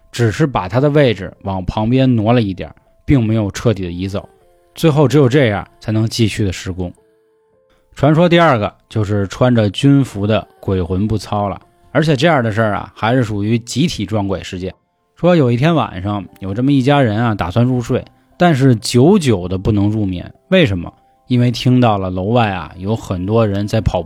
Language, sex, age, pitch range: Chinese, male, 20-39, 100-140 Hz